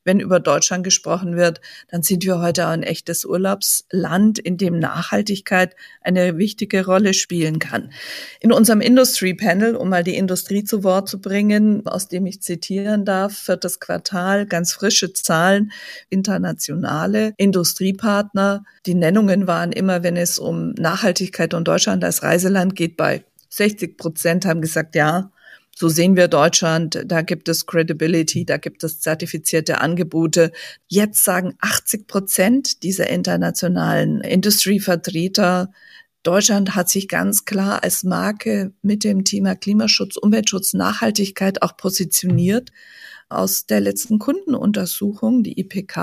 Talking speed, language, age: 135 wpm, German, 50-69